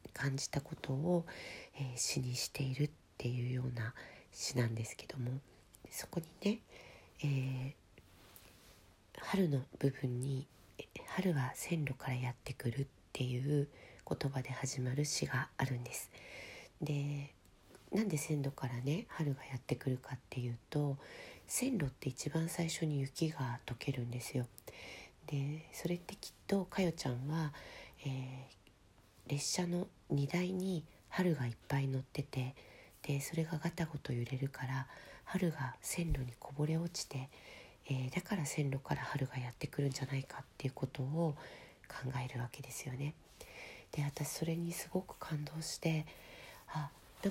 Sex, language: female, Japanese